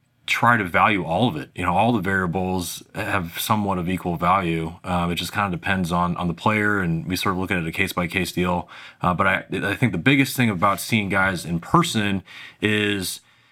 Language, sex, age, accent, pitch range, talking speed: English, male, 30-49, American, 90-110 Hz, 230 wpm